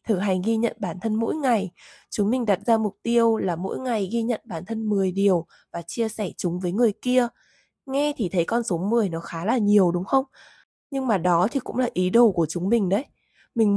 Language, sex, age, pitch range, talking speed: Vietnamese, female, 20-39, 180-235 Hz, 240 wpm